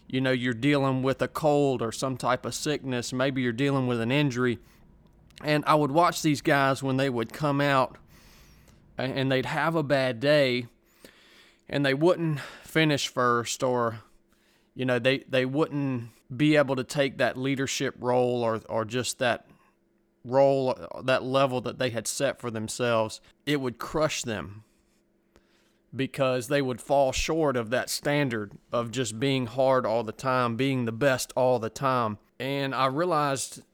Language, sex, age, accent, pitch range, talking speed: English, male, 30-49, American, 120-140 Hz, 165 wpm